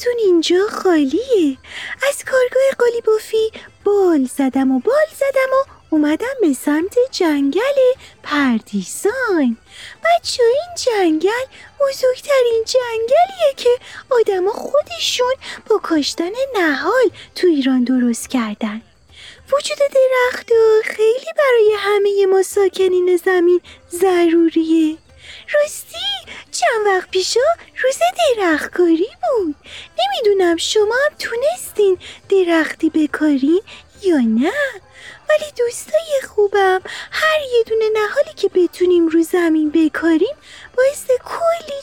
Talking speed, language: 100 wpm, Persian